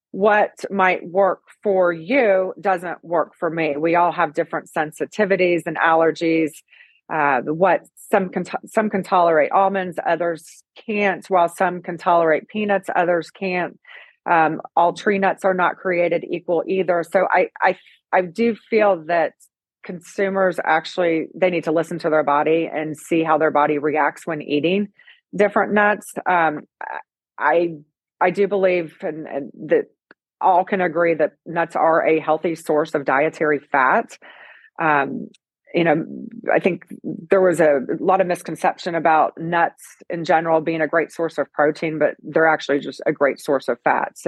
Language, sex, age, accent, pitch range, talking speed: English, female, 30-49, American, 155-185 Hz, 160 wpm